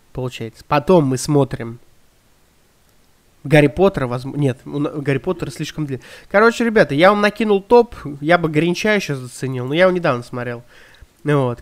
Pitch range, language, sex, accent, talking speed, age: 130-175 Hz, Russian, male, native, 155 wpm, 20-39